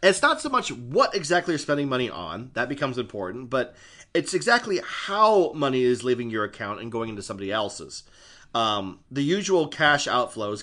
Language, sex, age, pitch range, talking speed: English, male, 30-49, 110-165 Hz, 180 wpm